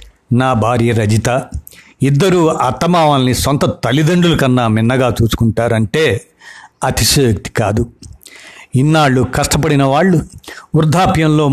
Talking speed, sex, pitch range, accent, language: 85 wpm, male, 115-145 Hz, native, Telugu